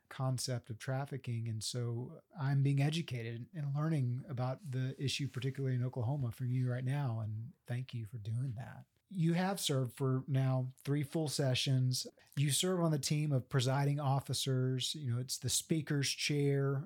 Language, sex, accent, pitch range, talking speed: English, male, American, 125-145 Hz, 170 wpm